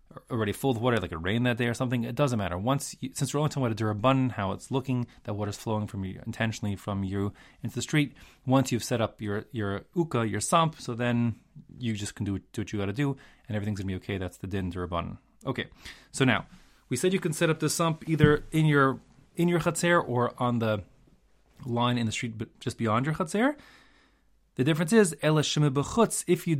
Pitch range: 110-150 Hz